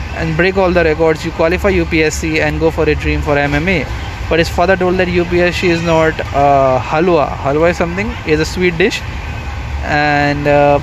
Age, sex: 20-39, male